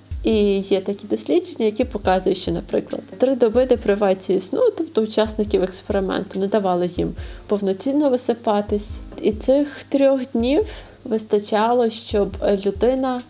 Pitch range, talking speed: 195-250 Hz, 120 wpm